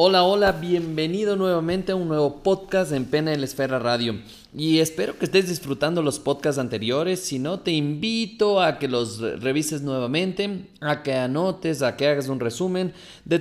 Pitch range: 130-180 Hz